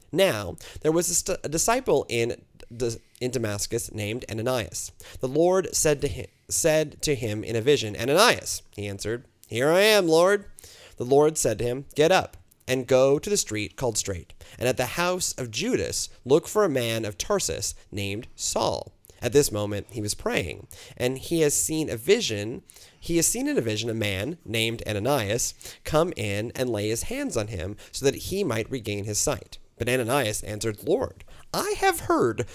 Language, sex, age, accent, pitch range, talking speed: English, male, 30-49, American, 110-165 Hz, 185 wpm